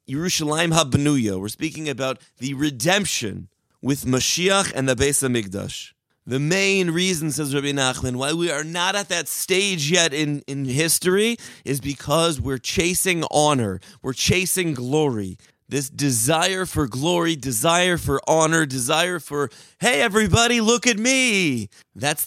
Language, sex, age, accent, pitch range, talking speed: English, male, 30-49, American, 130-180 Hz, 145 wpm